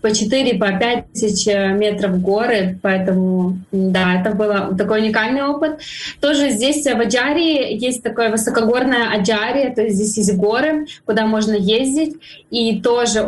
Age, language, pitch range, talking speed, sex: 20-39, Ukrainian, 195-235 Hz, 140 wpm, female